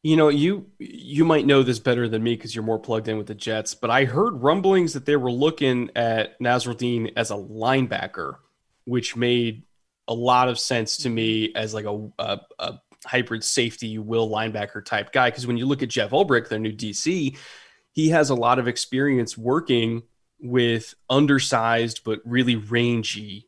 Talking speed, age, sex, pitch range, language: 185 wpm, 20-39, male, 115-130 Hz, English